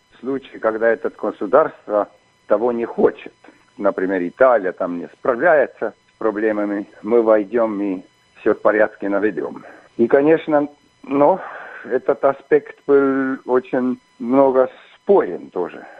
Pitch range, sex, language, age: 105-130 Hz, male, Russian, 50-69